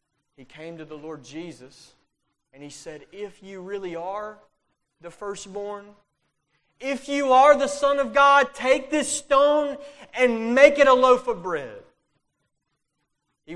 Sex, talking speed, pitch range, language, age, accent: male, 145 wpm, 150-215 Hz, English, 30-49, American